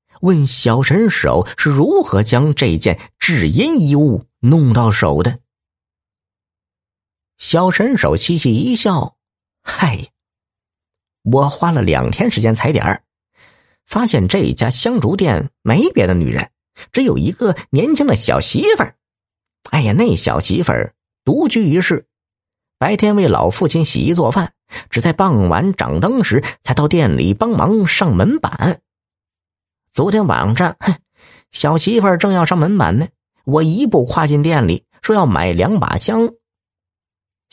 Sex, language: male, Chinese